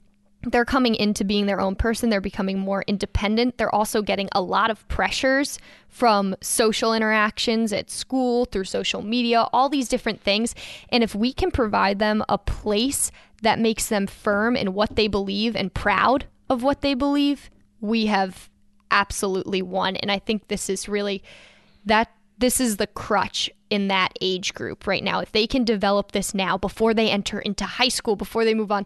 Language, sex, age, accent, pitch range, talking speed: English, female, 10-29, American, 200-235 Hz, 185 wpm